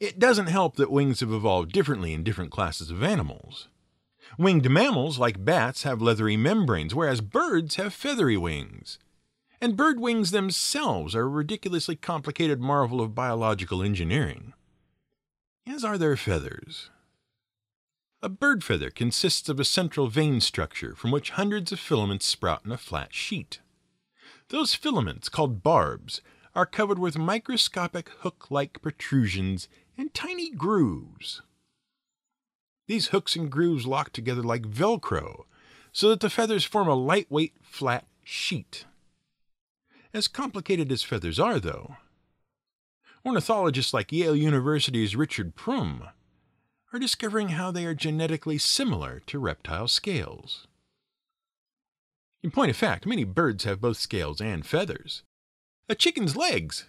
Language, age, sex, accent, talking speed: English, 50-69, male, American, 135 wpm